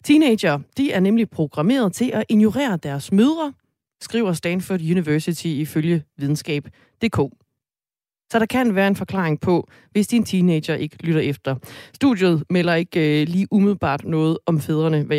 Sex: female